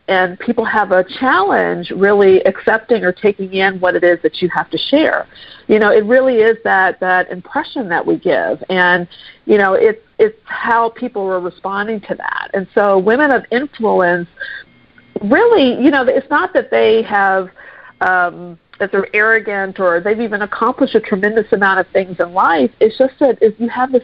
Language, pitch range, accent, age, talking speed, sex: English, 185-225 Hz, American, 50-69, 185 wpm, female